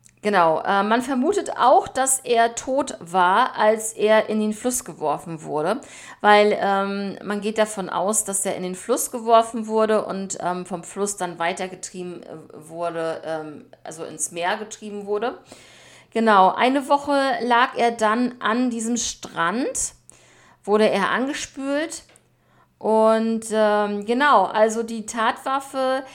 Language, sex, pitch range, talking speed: German, female, 195-240 Hz, 140 wpm